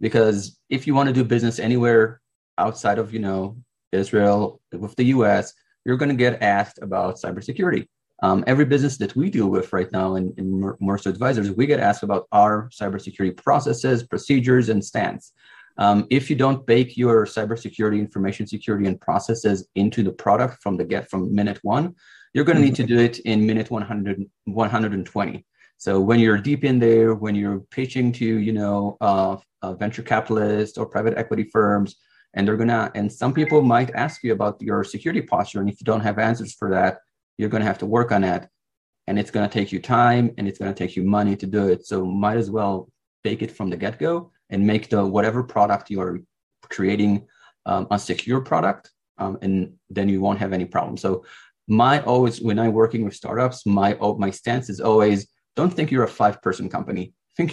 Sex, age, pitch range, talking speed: male, 30-49, 100-120 Hz, 195 wpm